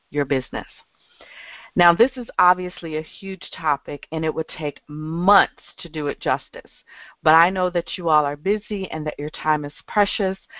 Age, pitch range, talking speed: 40-59, 155-185 Hz, 180 wpm